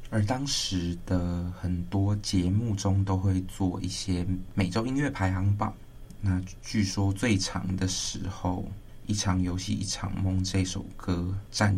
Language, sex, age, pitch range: Chinese, male, 20-39, 95-105 Hz